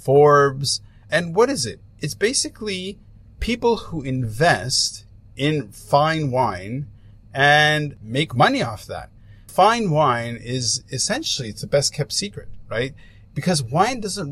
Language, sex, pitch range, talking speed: English, male, 110-160 Hz, 130 wpm